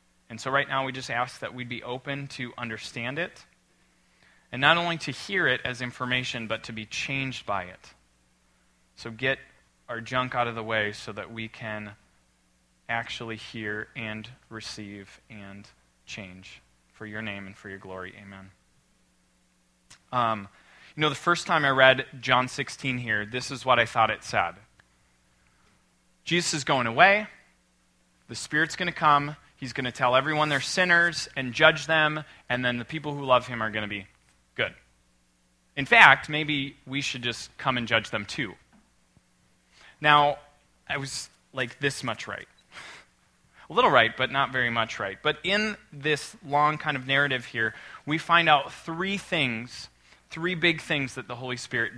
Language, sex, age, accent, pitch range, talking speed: English, male, 20-39, American, 100-145 Hz, 170 wpm